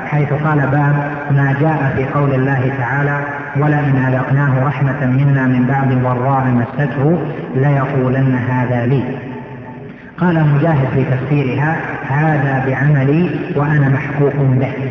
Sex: female